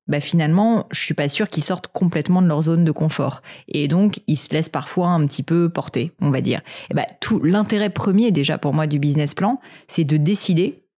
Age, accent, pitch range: 30-49, French, 150-190 Hz